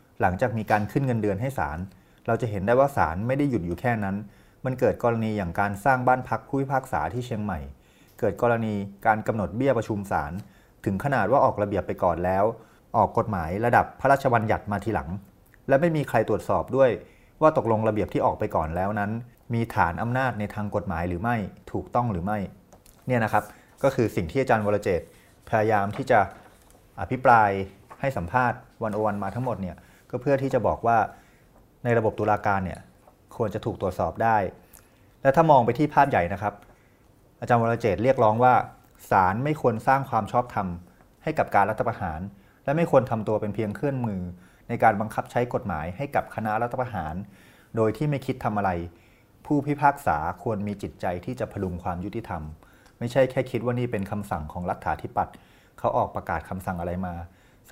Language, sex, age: Thai, male, 30-49